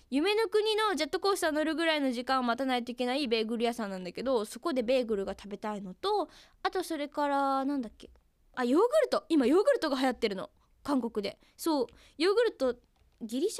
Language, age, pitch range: Japanese, 10-29, 230-330 Hz